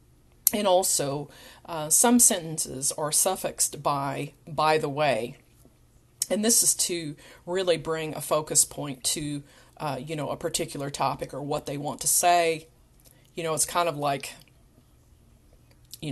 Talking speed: 150 wpm